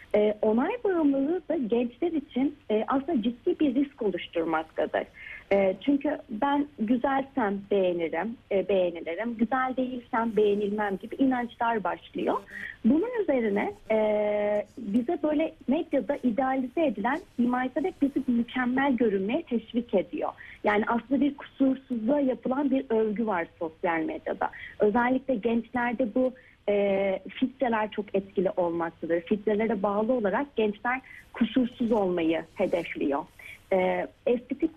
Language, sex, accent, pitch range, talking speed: Turkish, female, native, 210-270 Hz, 105 wpm